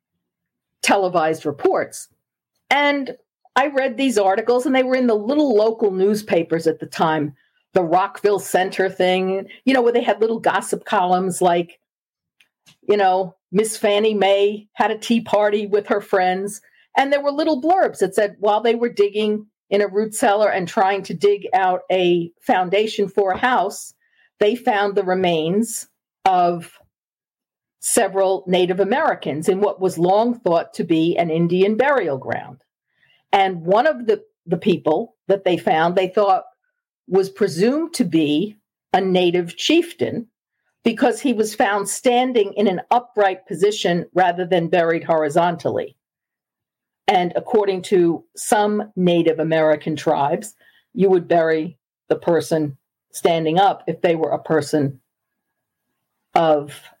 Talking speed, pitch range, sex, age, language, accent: 145 wpm, 175-225 Hz, female, 50-69, English, American